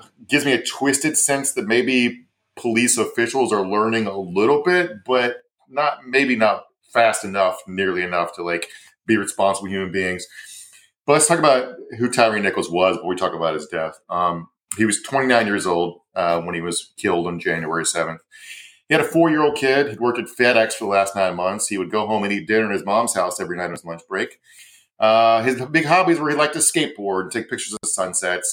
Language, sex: English, male